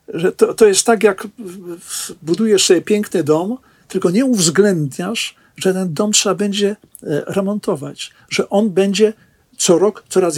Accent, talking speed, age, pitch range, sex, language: native, 145 wpm, 50-69, 165-210 Hz, male, Polish